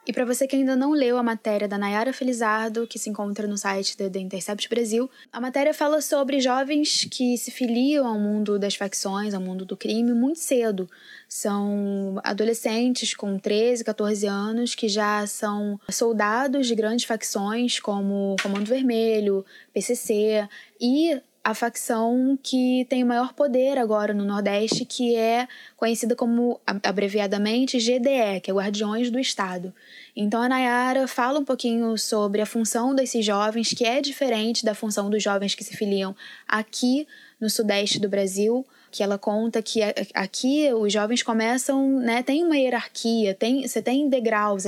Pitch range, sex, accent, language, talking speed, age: 205-255 Hz, female, Brazilian, English, 160 wpm, 10-29